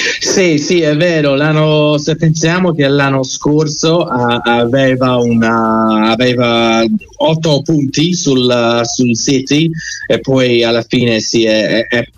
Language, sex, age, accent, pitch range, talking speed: Italian, male, 30-49, native, 115-145 Hz, 135 wpm